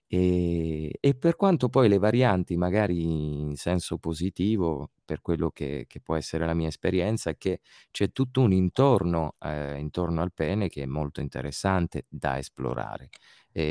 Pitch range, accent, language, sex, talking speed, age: 85-95 Hz, native, Italian, male, 160 wpm, 30-49